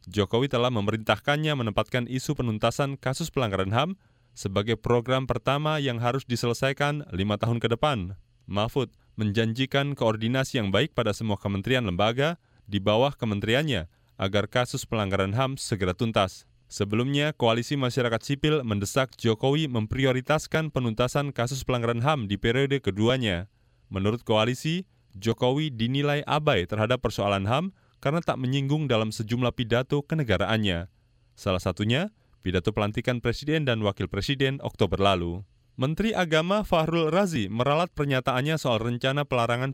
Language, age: Indonesian, 20-39